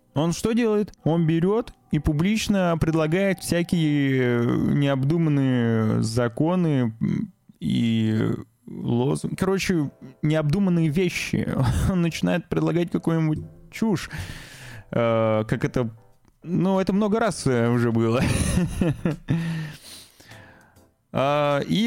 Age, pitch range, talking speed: 20-39, 130-180 Hz, 80 wpm